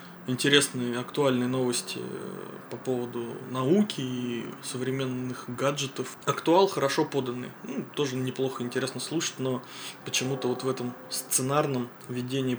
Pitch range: 125-145 Hz